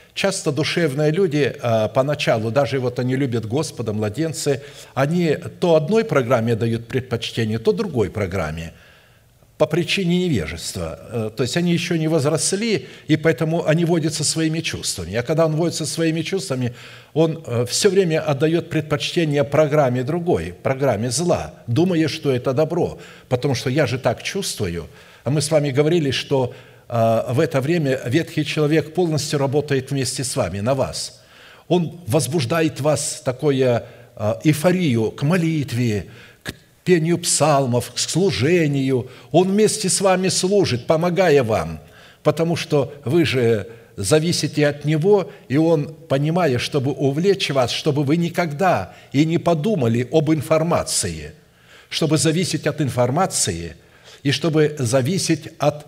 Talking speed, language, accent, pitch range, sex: 135 wpm, Russian, native, 125-165 Hz, male